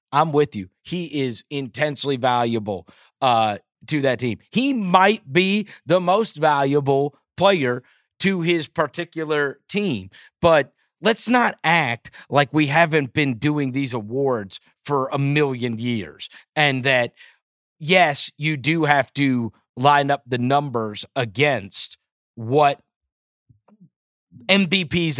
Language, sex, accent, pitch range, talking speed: English, male, American, 135-195 Hz, 120 wpm